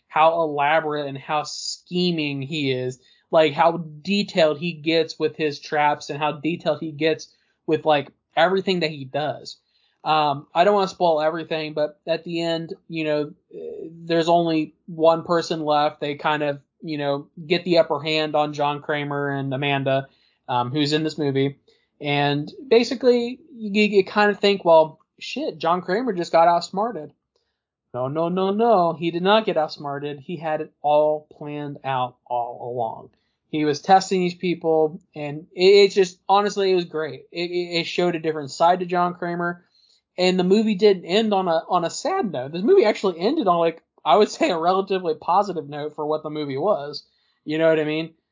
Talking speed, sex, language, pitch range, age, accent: 185 wpm, male, English, 150-180 Hz, 20-39, American